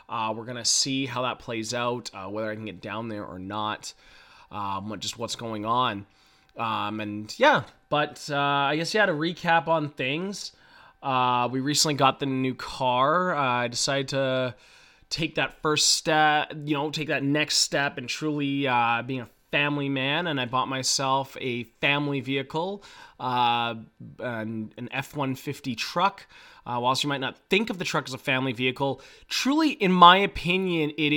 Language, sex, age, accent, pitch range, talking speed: English, male, 20-39, American, 130-165 Hz, 175 wpm